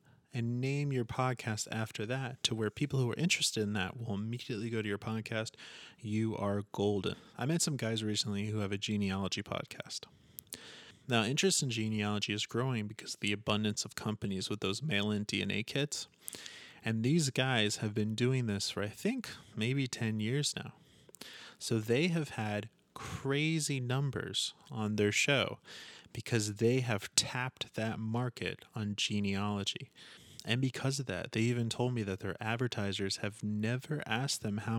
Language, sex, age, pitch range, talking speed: English, male, 30-49, 105-130 Hz, 165 wpm